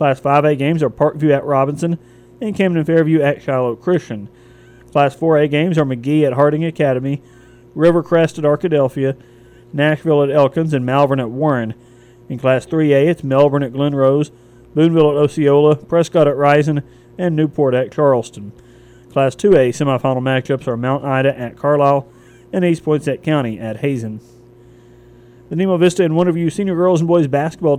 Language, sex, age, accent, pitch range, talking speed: English, male, 30-49, American, 120-155 Hz, 165 wpm